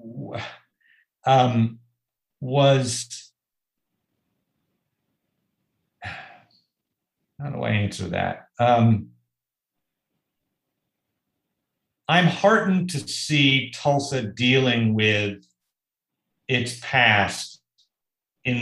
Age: 50-69